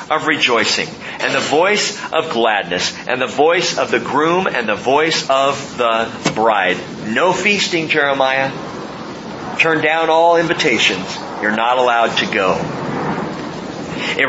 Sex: male